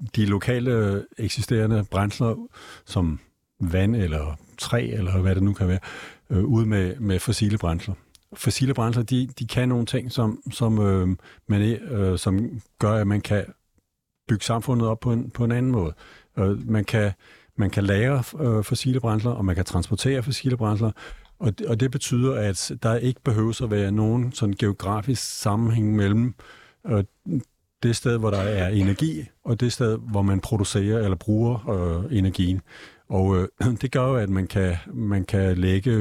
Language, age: Danish, 50-69